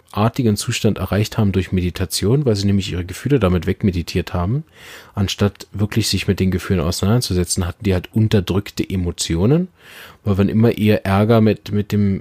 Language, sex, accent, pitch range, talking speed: German, male, German, 95-115 Hz, 165 wpm